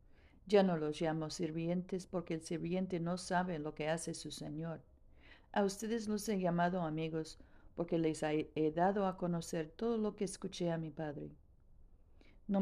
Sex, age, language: female, 50-69, Spanish